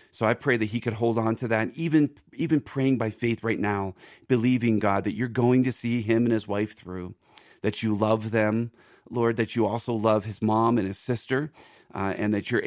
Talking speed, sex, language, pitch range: 225 wpm, male, English, 100-115 Hz